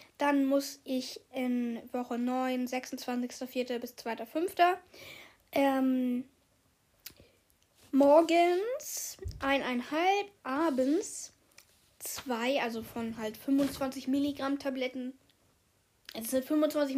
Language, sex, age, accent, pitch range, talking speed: German, female, 10-29, German, 255-305 Hz, 80 wpm